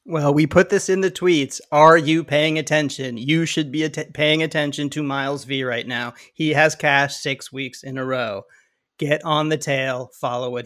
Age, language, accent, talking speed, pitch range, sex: 30-49, English, American, 195 wpm, 140-170 Hz, male